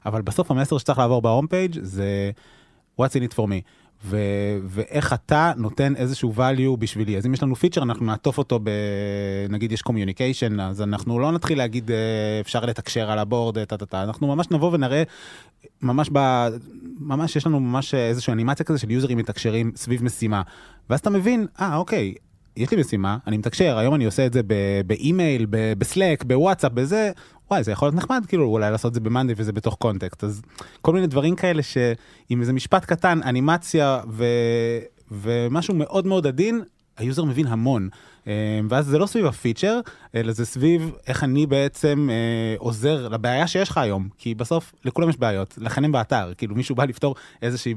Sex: male